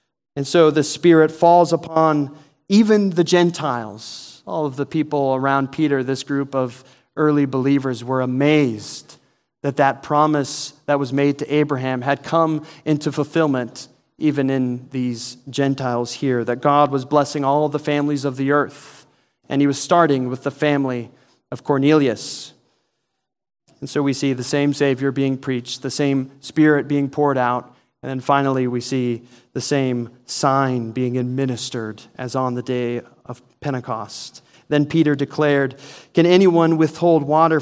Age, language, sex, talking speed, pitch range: 30-49, English, male, 155 wpm, 130-150 Hz